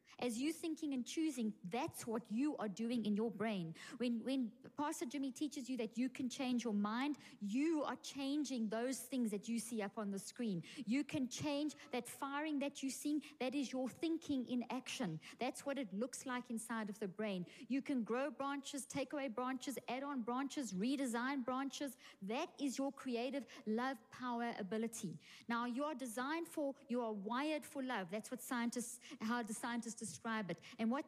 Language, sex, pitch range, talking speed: English, female, 230-285 Hz, 190 wpm